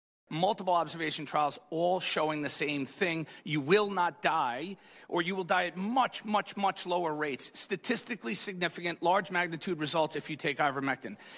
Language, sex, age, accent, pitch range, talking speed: English, male, 40-59, American, 155-200 Hz, 165 wpm